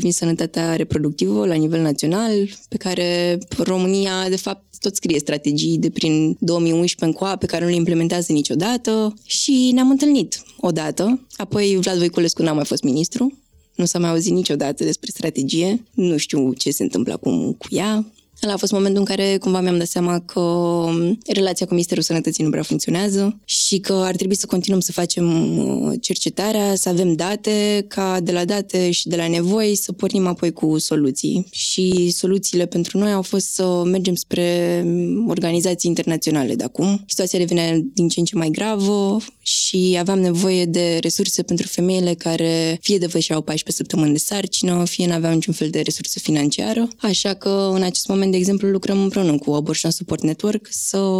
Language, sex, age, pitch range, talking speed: Romanian, female, 20-39, 165-195 Hz, 180 wpm